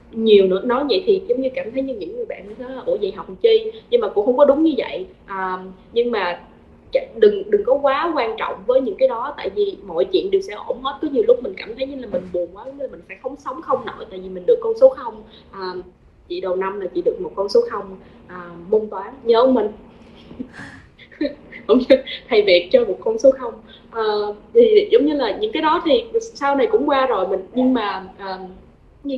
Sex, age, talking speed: female, 20-39, 230 wpm